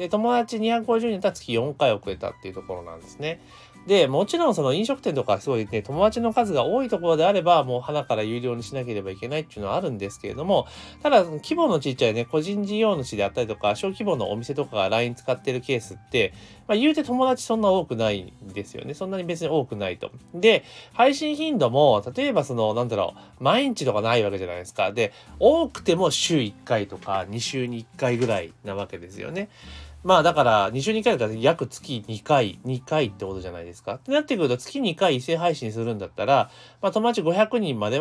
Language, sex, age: Japanese, male, 30-49